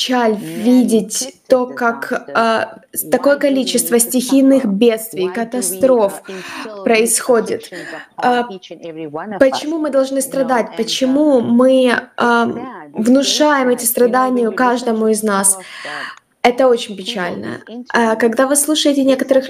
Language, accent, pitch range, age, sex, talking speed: Russian, native, 220-265 Hz, 20-39, female, 100 wpm